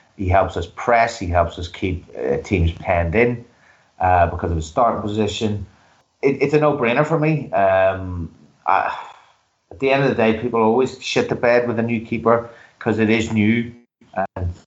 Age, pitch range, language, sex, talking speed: 30-49, 95-115 Hz, English, male, 190 wpm